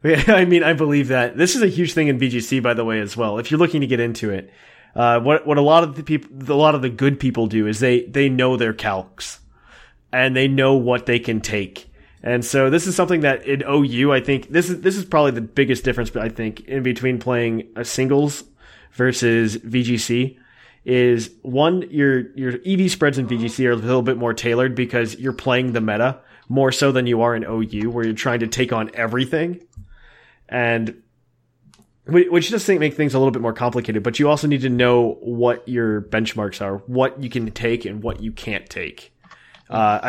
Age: 20-39